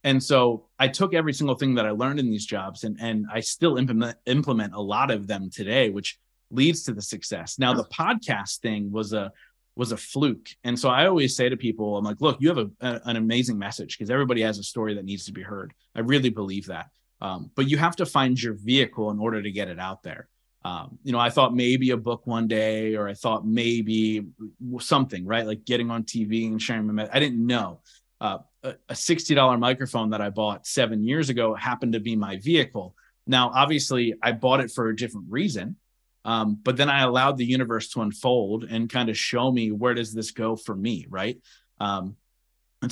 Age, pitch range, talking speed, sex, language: 30-49, 110-130 Hz, 220 wpm, male, English